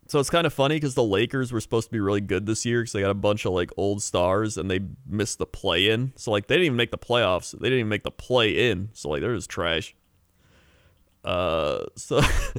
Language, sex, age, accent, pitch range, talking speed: English, male, 30-49, American, 100-135 Hz, 245 wpm